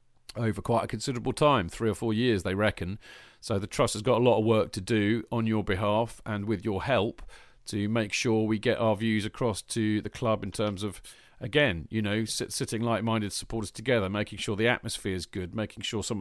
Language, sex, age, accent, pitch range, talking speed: English, male, 40-59, British, 100-125 Hz, 220 wpm